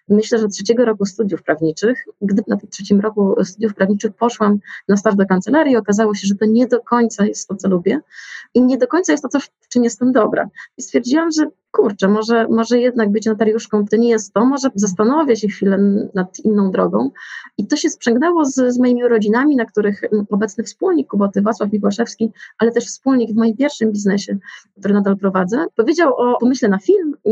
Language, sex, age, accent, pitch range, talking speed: Polish, female, 30-49, native, 195-235 Hz, 195 wpm